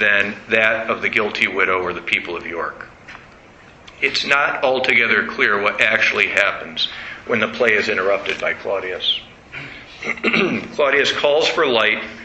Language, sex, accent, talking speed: English, male, American, 140 wpm